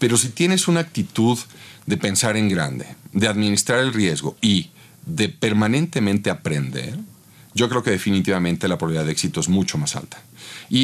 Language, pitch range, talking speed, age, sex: Spanish, 95-125 Hz, 165 wpm, 40-59, male